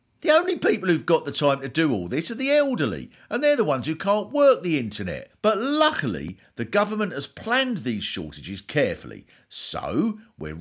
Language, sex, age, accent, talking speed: English, male, 50-69, British, 190 wpm